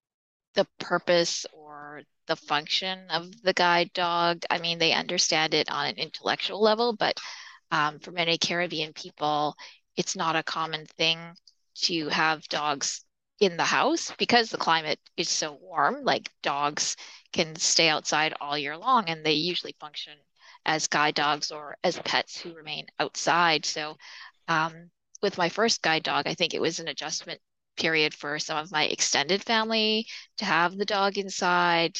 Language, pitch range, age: English, 155-180 Hz, 20-39